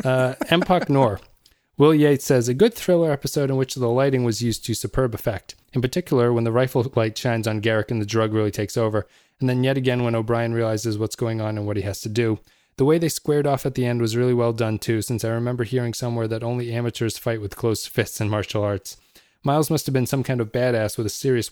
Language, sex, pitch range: English, male, 110-130 Hz